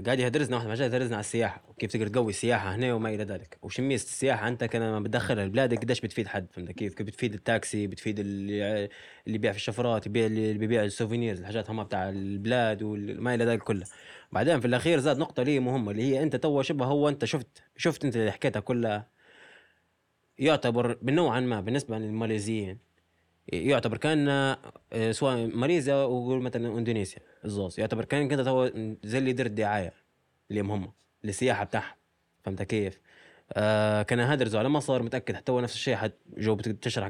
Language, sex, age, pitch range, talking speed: Arabic, male, 20-39, 105-130 Hz, 165 wpm